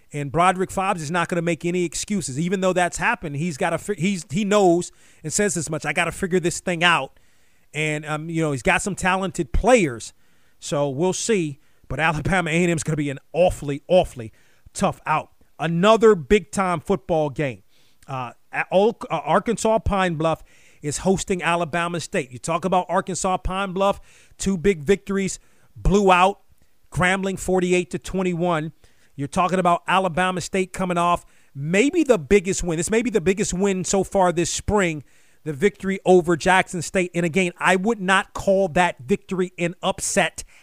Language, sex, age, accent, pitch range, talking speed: English, male, 40-59, American, 165-195 Hz, 175 wpm